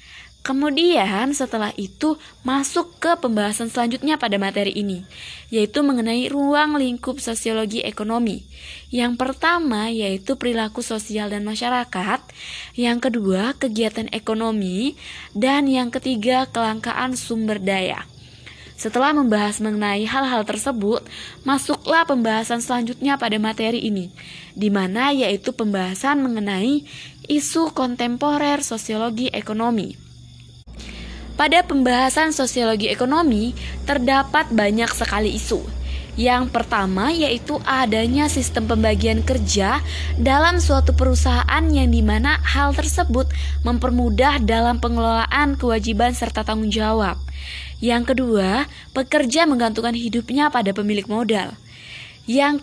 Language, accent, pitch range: Indonesian, native, 205-270 Hz